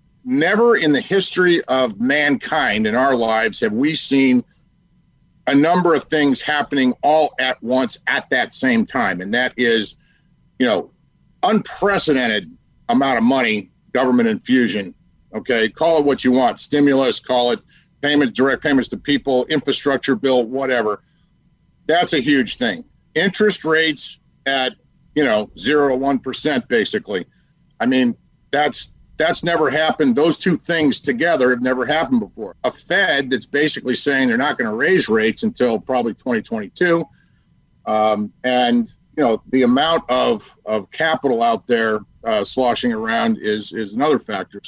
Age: 50-69